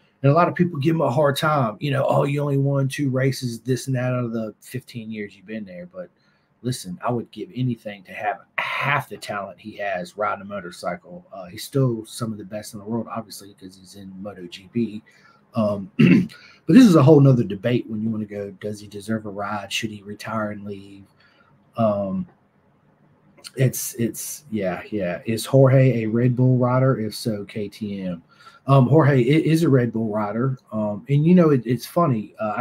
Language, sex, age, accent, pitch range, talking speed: English, male, 30-49, American, 105-135 Hz, 205 wpm